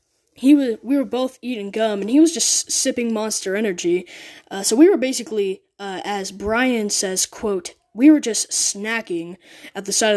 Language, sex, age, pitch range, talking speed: English, female, 10-29, 190-245 Hz, 185 wpm